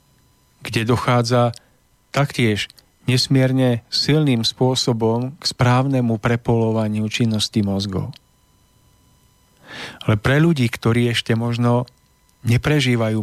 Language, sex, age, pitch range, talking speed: Slovak, male, 40-59, 110-135 Hz, 80 wpm